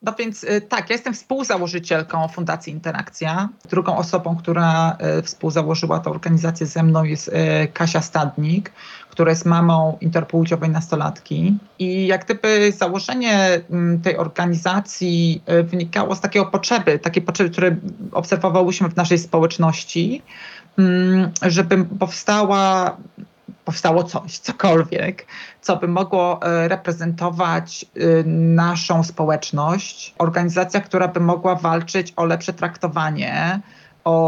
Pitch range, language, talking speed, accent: 165-190 Hz, Polish, 105 wpm, native